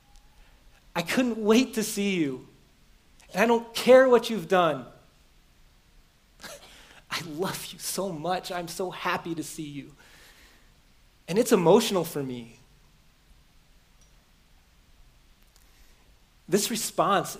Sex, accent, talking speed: male, American, 105 wpm